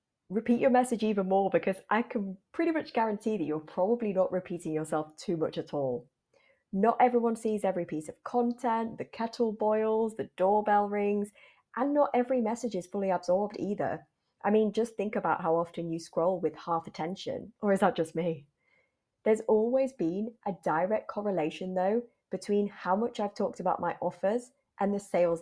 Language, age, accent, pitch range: English, 20-39, British, 175-235 Hz